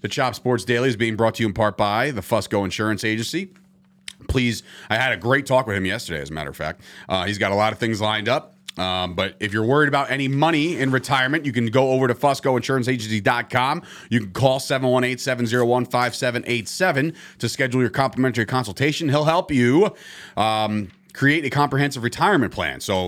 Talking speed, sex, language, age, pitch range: 190 wpm, male, English, 30-49, 110-135 Hz